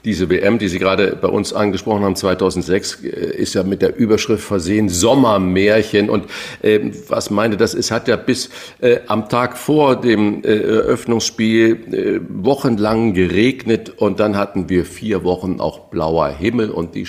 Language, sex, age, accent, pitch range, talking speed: German, male, 50-69, German, 90-110 Hz, 165 wpm